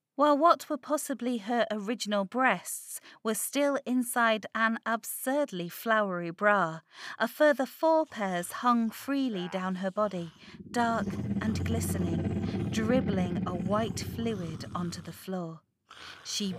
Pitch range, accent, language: 180-240 Hz, British, English